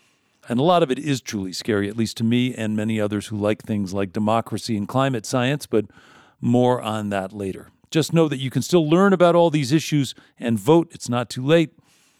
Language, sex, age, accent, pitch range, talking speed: English, male, 50-69, American, 110-145 Hz, 220 wpm